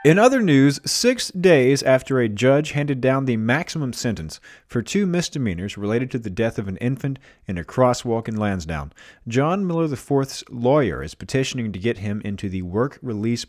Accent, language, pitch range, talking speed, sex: American, English, 100-130 Hz, 180 wpm, male